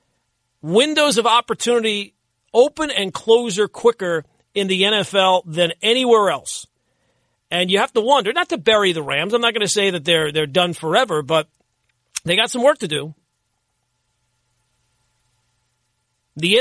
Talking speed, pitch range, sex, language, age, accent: 150 wpm, 155-220 Hz, male, English, 40-59, American